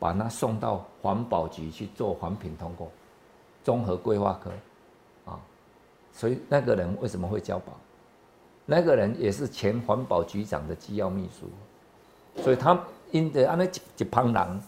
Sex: male